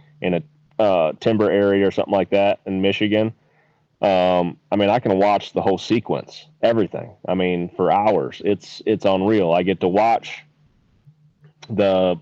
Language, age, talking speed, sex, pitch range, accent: English, 30-49, 160 wpm, male, 95-115 Hz, American